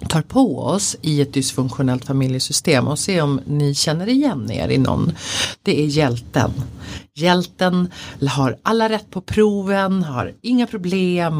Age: 50-69